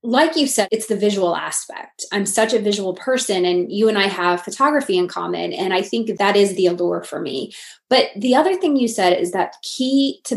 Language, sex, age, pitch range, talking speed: English, female, 20-39, 180-245 Hz, 225 wpm